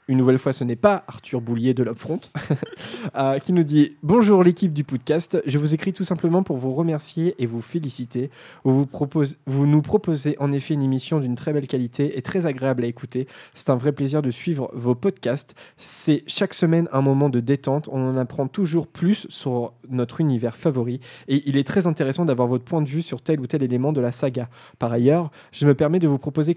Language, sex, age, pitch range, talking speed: French, male, 20-39, 130-165 Hz, 225 wpm